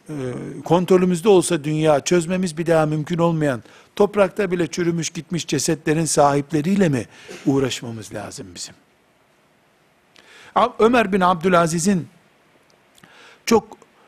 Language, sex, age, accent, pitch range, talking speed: Turkish, male, 60-79, native, 140-195 Hz, 95 wpm